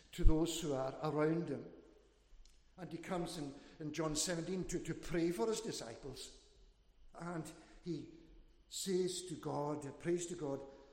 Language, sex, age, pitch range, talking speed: English, male, 60-79, 145-175 Hz, 150 wpm